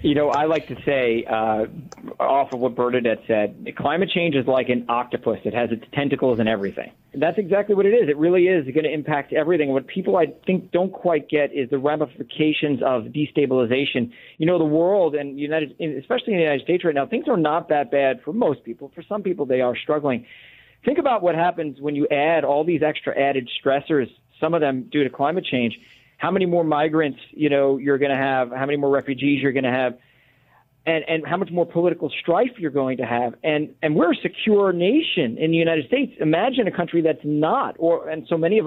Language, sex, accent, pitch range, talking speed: English, male, American, 135-170 Hz, 225 wpm